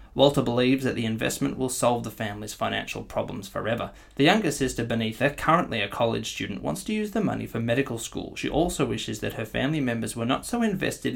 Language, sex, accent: English, male, Australian